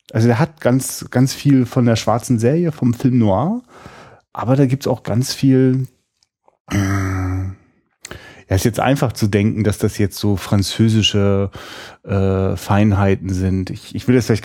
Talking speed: 160 wpm